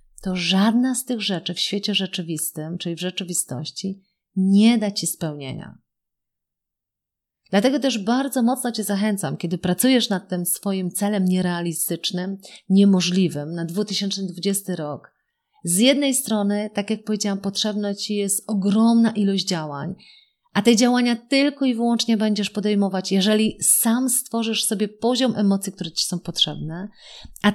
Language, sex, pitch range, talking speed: Polish, female, 185-230 Hz, 135 wpm